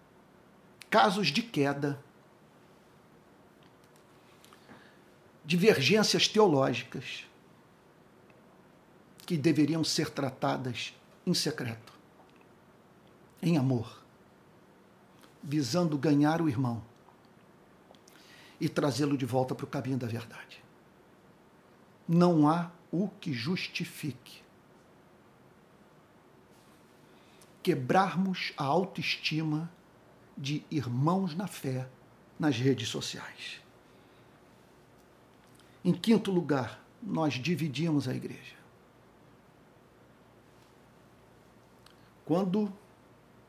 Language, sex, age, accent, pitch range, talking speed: Portuguese, male, 50-69, Brazilian, 140-185 Hz, 70 wpm